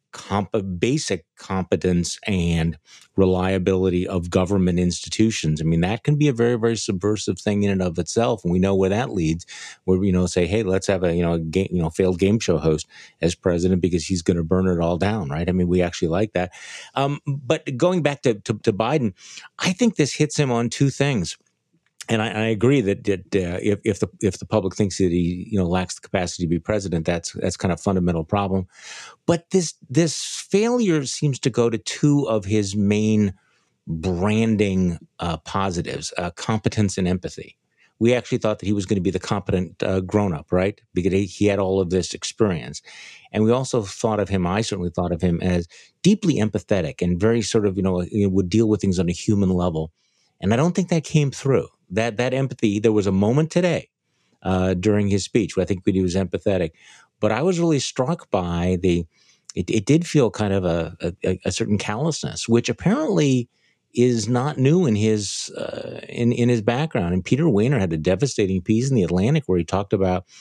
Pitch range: 90-120 Hz